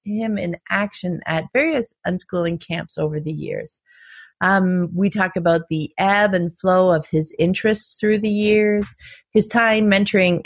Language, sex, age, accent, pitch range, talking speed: English, female, 30-49, American, 170-235 Hz, 155 wpm